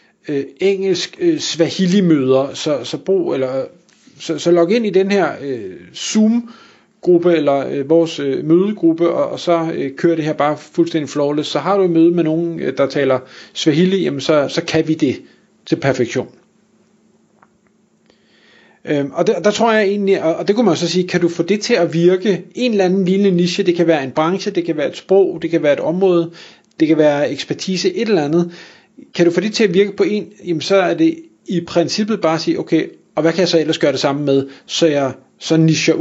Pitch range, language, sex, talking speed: 150-190 Hz, Danish, male, 215 wpm